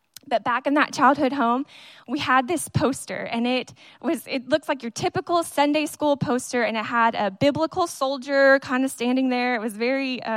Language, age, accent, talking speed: English, 10-29, American, 195 wpm